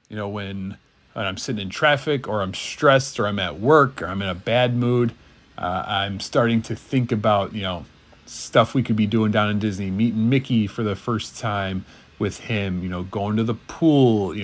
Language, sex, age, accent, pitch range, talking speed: English, male, 30-49, American, 100-120 Hz, 215 wpm